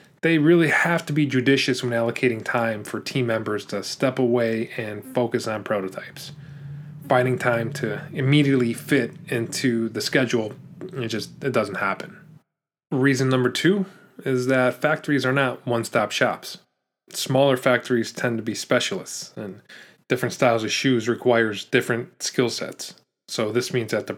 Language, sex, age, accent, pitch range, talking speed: English, male, 20-39, American, 115-140 Hz, 150 wpm